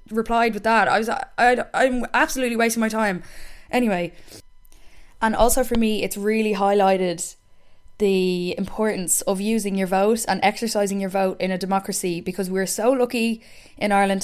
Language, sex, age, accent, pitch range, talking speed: English, female, 10-29, Irish, 195-230 Hz, 165 wpm